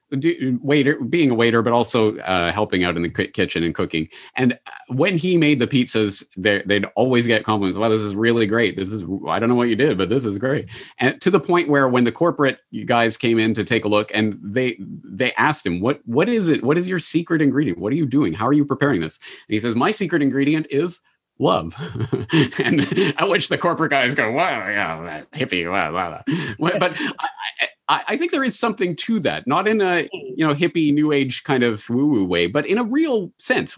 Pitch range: 110-155 Hz